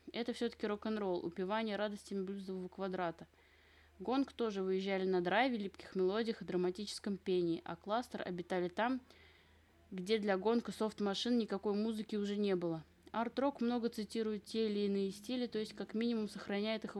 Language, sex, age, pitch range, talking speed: Russian, female, 20-39, 180-215 Hz, 150 wpm